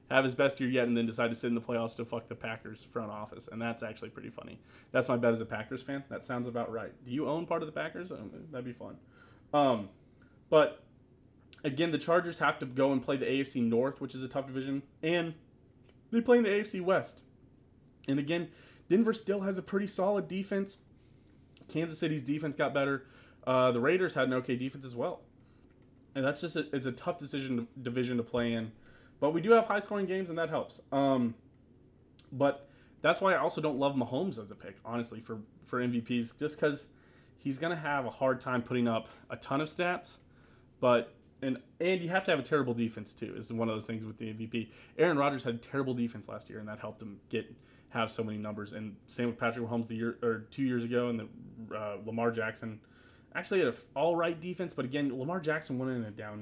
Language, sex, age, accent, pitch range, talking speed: English, male, 20-39, American, 115-145 Hz, 225 wpm